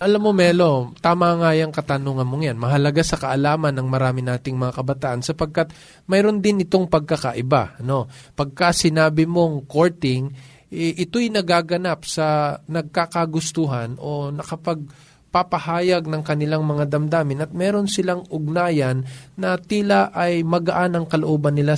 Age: 20-39